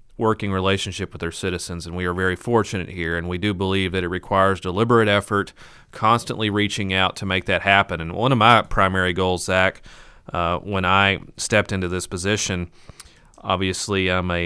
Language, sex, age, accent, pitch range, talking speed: English, male, 30-49, American, 90-105 Hz, 185 wpm